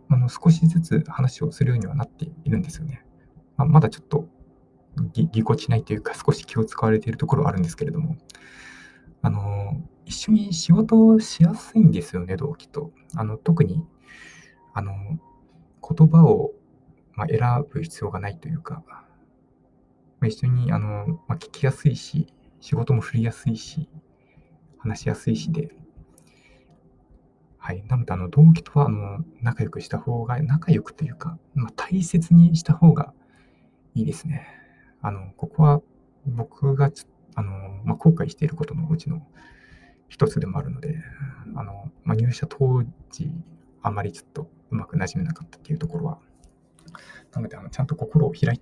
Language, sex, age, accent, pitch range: Japanese, male, 20-39, native, 125-160 Hz